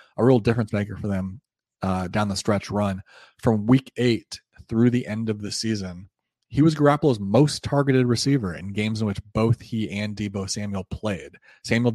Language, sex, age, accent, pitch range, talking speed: English, male, 30-49, American, 100-115 Hz, 185 wpm